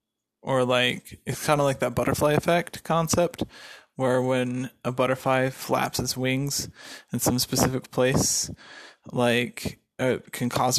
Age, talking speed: 20-39, 140 wpm